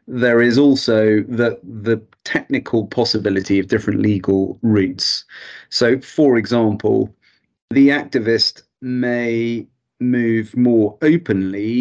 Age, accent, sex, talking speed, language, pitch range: 30-49, British, male, 100 wpm, English, 105-115 Hz